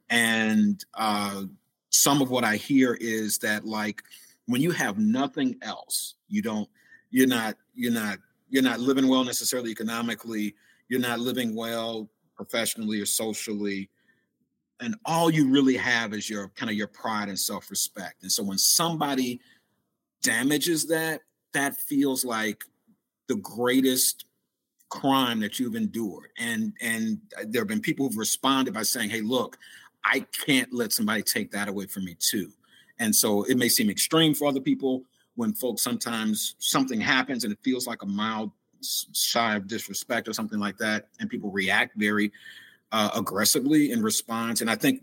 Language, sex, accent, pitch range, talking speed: English, male, American, 110-160 Hz, 165 wpm